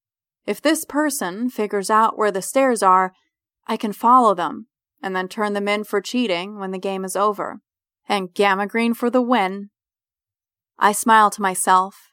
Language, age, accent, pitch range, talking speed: English, 20-39, American, 185-225 Hz, 175 wpm